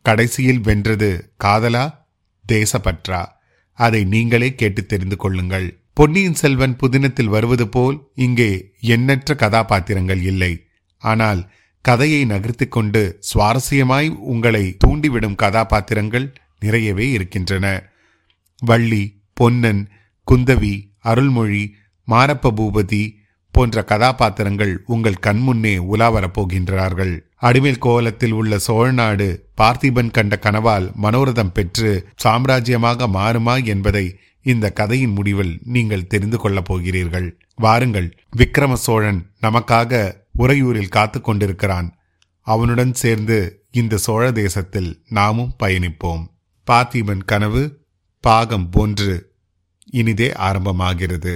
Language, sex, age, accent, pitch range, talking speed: Tamil, male, 30-49, native, 95-120 Hz, 90 wpm